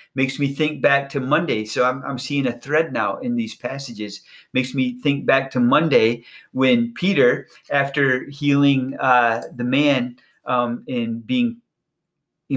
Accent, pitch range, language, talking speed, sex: American, 120-145 Hz, English, 160 wpm, male